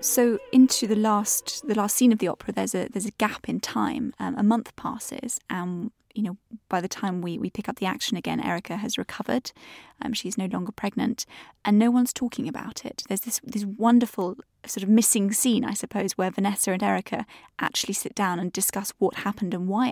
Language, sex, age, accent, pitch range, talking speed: English, female, 20-39, British, 195-240 Hz, 215 wpm